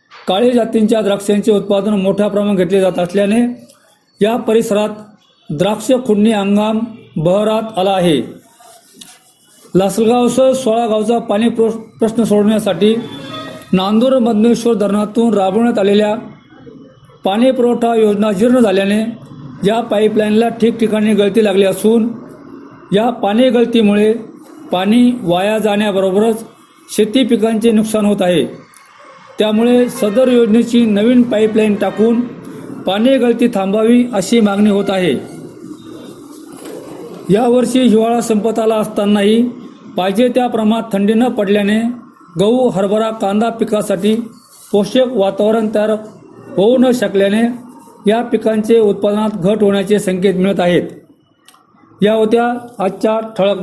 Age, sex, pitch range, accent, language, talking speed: 40-59, male, 200-235 Hz, native, Marathi, 100 wpm